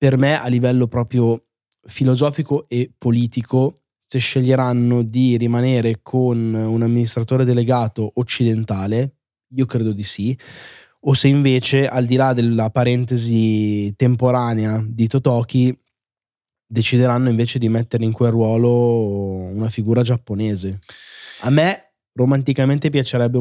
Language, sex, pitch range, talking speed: Italian, male, 115-130 Hz, 120 wpm